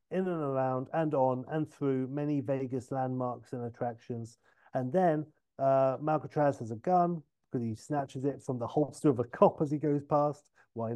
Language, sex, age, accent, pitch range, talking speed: English, male, 40-59, British, 125-150 Hz, 185 wpm